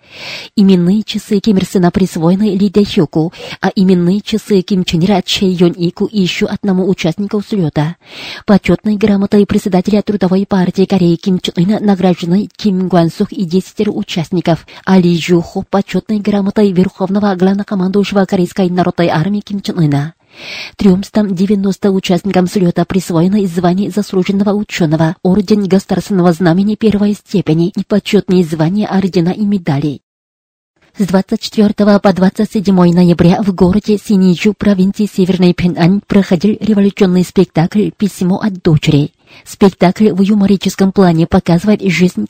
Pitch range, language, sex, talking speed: 180-205 Hz, Russian, female, 130 wpm